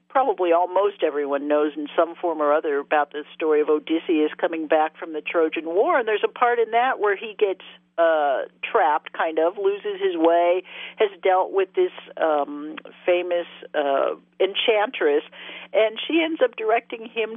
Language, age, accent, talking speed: English, 50-69, American, 175 wpm